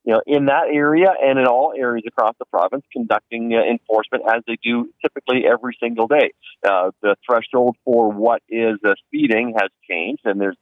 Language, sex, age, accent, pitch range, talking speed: English, male, 40-59, American, 110-140 Hz, 190 wpm